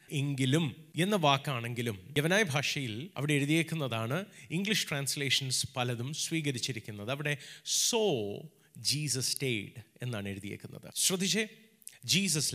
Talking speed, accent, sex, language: 90 wpm, native, male, Malayalam